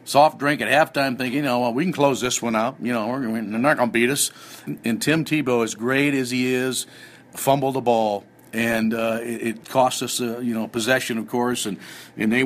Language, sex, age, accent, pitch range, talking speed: English, male, 50-69, American, 115-140 Hz, 235 wpm